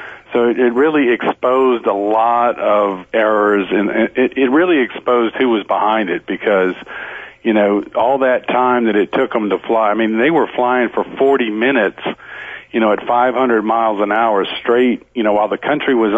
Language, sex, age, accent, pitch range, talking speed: English, male, 50-69, American, 105-125 Hz, 185 wpm